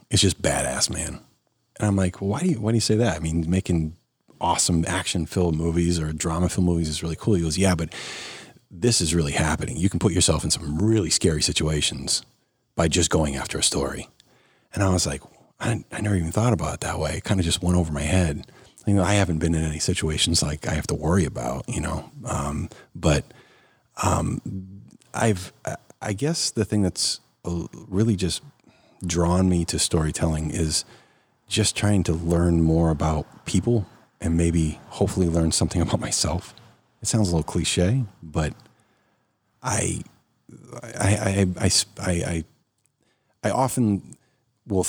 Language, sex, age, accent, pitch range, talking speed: English, male, 30-49, American, 80-105 Hz, 180 wpm